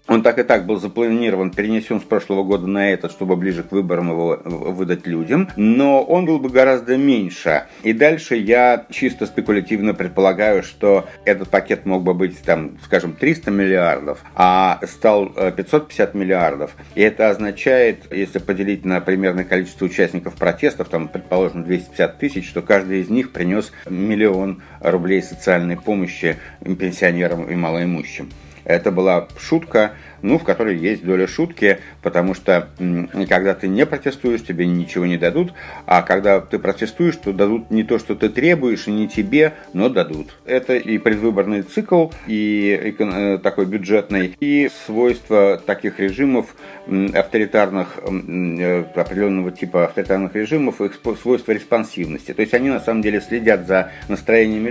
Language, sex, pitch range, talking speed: Russian, male, 95-120 Hz, 145 wpm